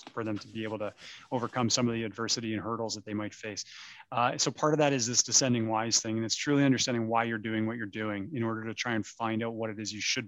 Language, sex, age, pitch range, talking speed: English, male, 20-39, 110-125 Hz, 285 wpm